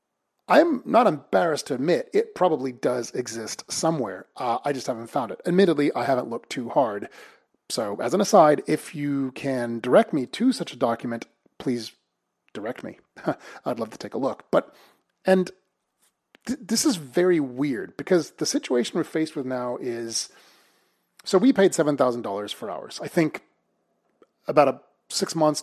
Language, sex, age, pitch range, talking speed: English, male, 30-49, 120-165 Hz, 165 wpm